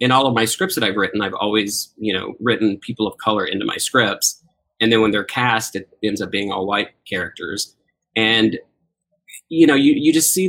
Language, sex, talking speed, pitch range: English, male, 215 wpm, 105-125 Hz